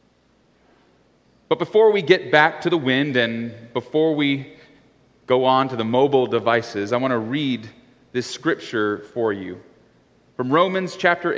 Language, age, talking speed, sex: English, 30-49, 150 wpm, male